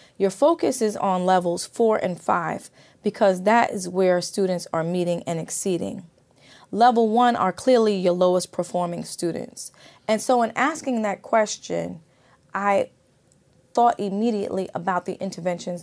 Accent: American